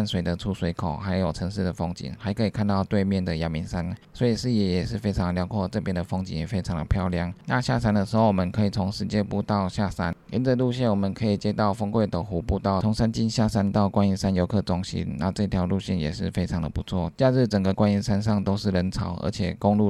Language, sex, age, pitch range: Chinese, male, 20-39, 90-105 Hz